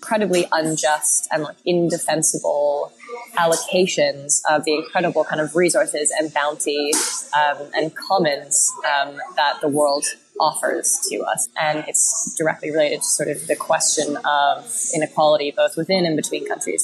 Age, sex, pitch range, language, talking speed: 20-39, female, 155-195 Hz, English, 140 wpm